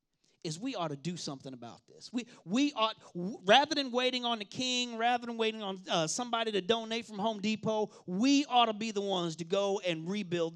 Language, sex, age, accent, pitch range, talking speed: English, male, 40-59, American, 170-225 Hz, 215 wpm